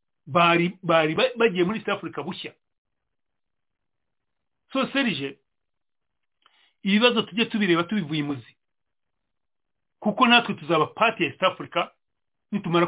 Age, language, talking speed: 40-59, English, 105 wpm